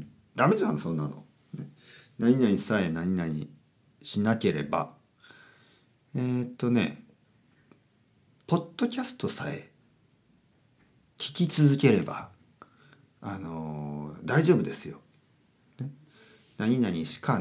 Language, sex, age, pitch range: Japanese, male, 50-69, 105-175 Hz